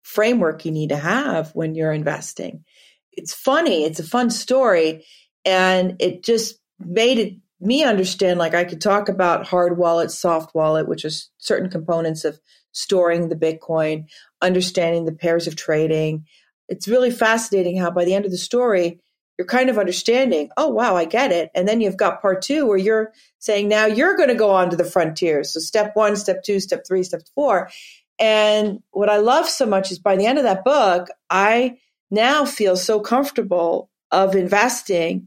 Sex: female